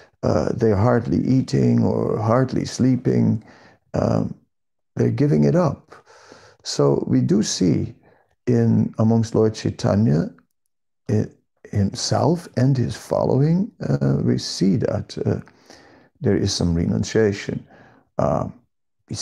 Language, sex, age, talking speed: English, male, 50-69, 110 wpm